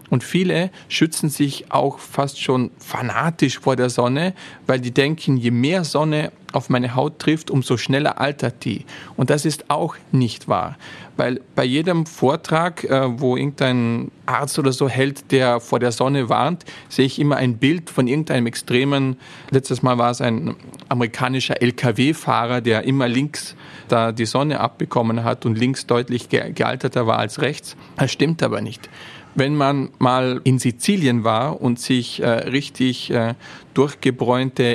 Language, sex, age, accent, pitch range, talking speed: German, male, 40-59, German, 120-145 Hz, 160 wpm